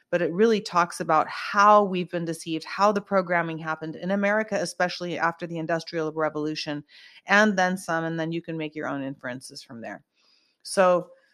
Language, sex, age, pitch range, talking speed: English, female, 30-49, 160-190 Hz, 180 wpm